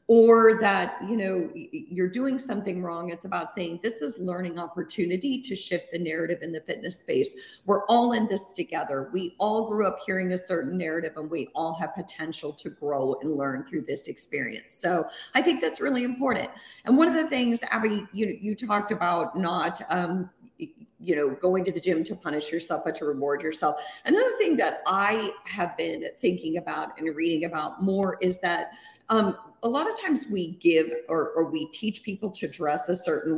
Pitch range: 165-230 Hz